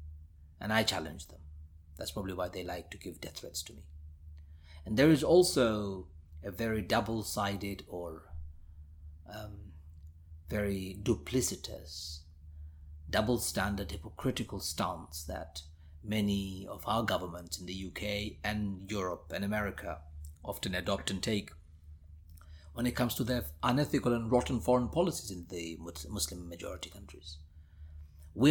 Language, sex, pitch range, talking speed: English, male, 80-110 Hz, 125 wpm